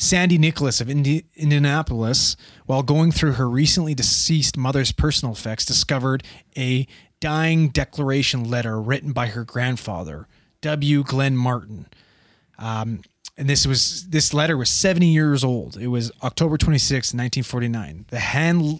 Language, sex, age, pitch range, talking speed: English, male, 30-49, 125-150 Hz, 130 wpm